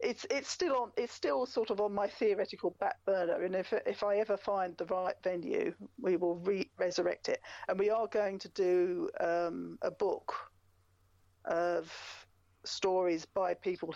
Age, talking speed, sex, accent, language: 40-59, 170 wpm, female, British, English